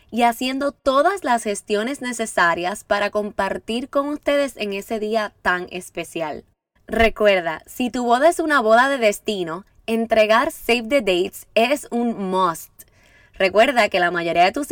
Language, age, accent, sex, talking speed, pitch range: Spanish, 10-29, American, female, 150 wpm, 195-275 Hz